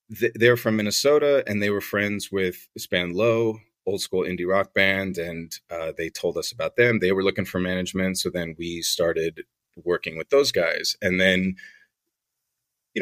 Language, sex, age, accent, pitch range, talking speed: English, male, 30-49, American, 100-135 Hz, 180 wpm